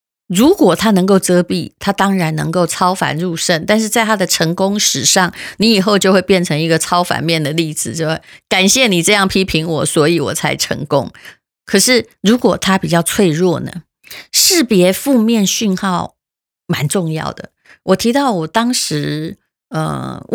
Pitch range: 165-210 Hz